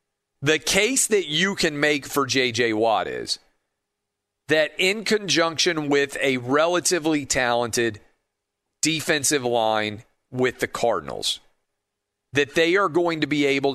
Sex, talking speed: male, 125 wpm